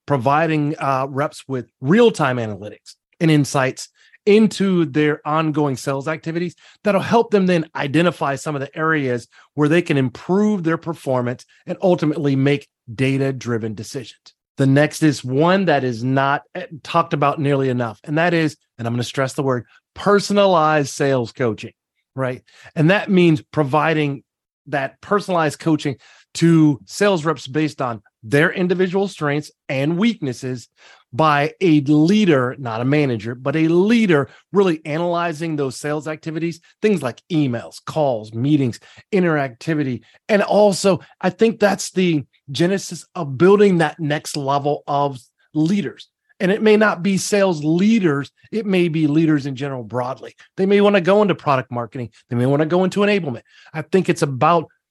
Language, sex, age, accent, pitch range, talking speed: English, male, 30-49, American, 135-175 Hz, 155 wpm